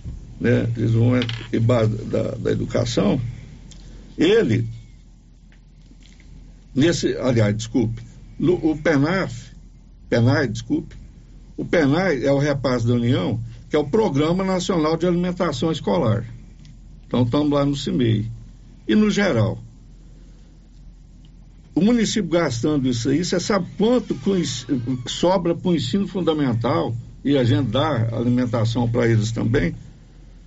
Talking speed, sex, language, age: 120 wpm, male, Portuguese, 60-79